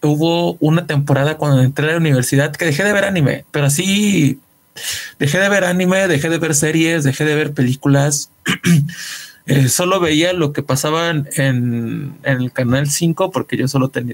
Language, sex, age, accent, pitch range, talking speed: Spanish, male, 20-39, Mexican, 130-165 Hz, 180 wpm